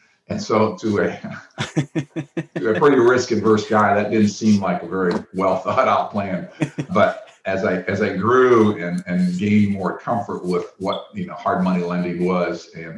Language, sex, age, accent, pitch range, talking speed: English, male, 50-69, American, 85-110 Hz, 175 wpm